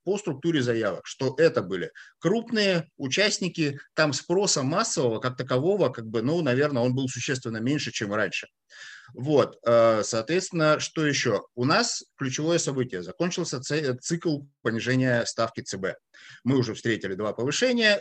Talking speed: 135 wpm